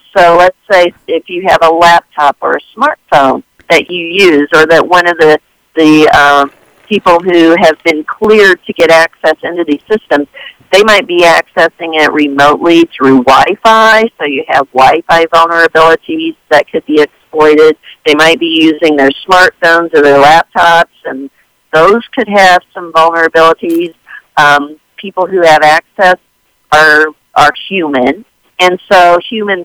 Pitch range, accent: 150-180 Hz, American